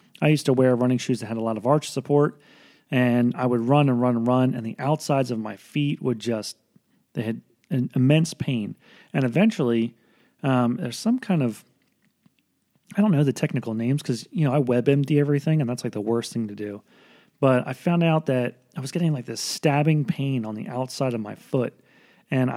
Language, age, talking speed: English, 30-49, 215 wpm